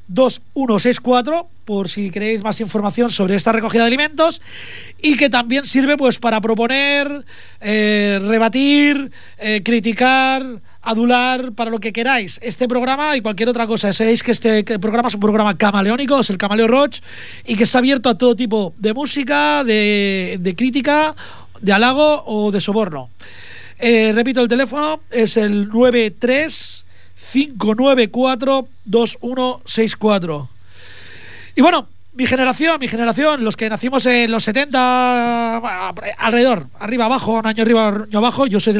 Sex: male